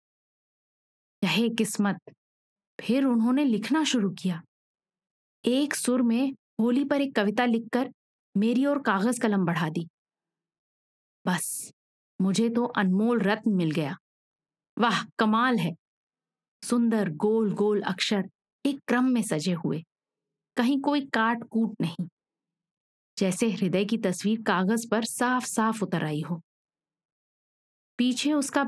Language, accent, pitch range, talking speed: Hindi, native, 190-235 Hz, 120 wpm